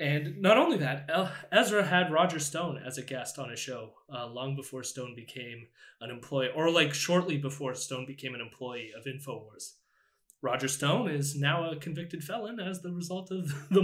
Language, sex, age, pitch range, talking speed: English, male, 20-39, 130-180 Hz, 185 wpm